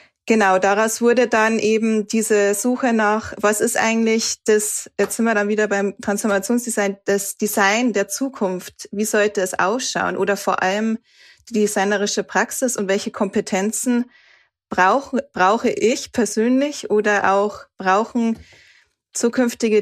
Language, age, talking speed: German, 20-39, 135 wpm